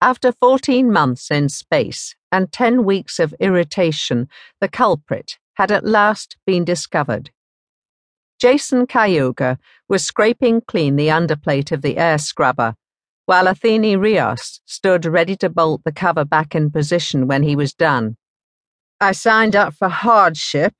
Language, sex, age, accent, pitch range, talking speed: English, female, 50-69, British, 155-215 Hz, 140 wpm